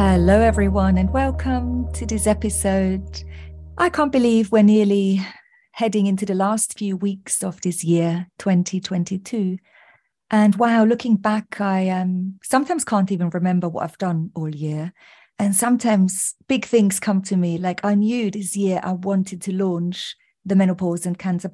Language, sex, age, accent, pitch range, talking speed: English, female, 40-59, British, 180-215 Hz, 160 wpm